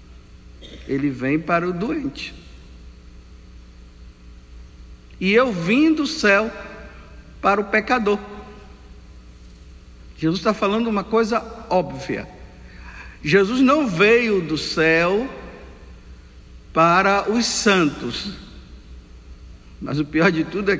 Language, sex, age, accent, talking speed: Portuguese, male, 60-79, Brazilian, 95 wpm